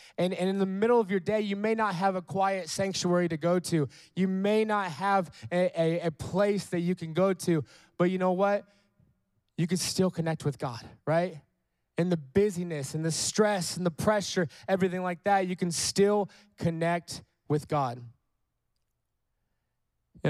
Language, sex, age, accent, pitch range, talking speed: English, male, 20-39, American, 140-180 Hz, 180 wpm